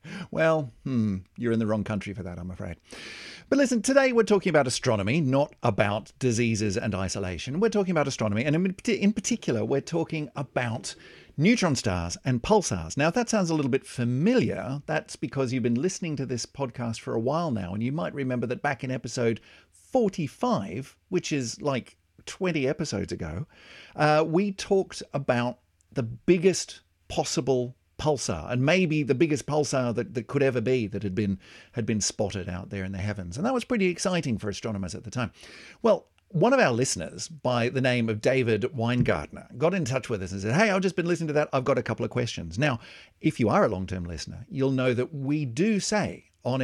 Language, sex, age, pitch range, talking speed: English, male, 50-69, 110-160 Hz, 200 wpm